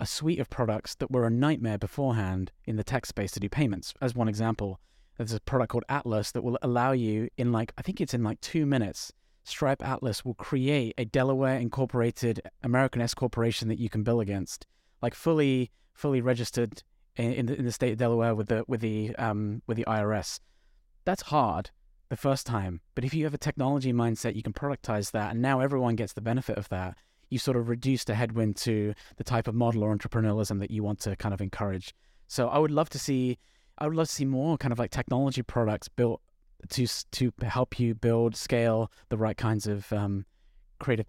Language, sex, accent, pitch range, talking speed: English, male, British, 110-130 Hz, 215 wpm